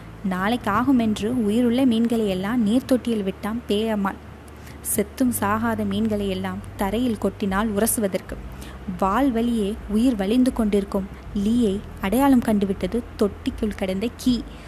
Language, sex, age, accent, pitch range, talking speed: Tamil, female, 20-39, native, 200-255 Hz, 95 wpm